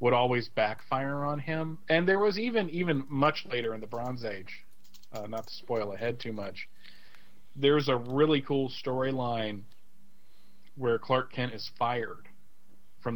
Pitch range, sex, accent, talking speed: 110-135 Hz, male, American, 155 wpm